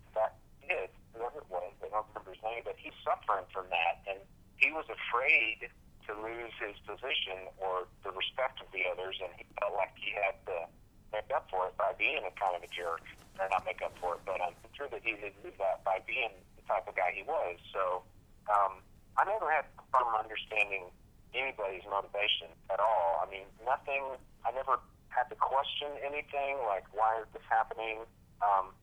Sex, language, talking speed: male, English, 200 wpm